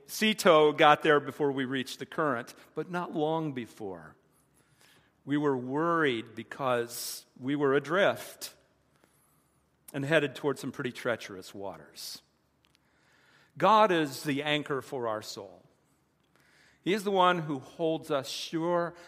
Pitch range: 135-170 Hz